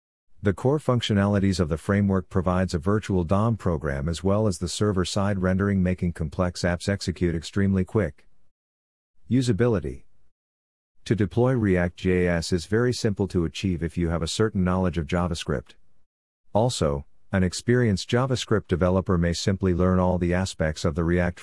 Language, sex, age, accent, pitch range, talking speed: English, male, 50-69, American, 85-100 Hz, 150 wpm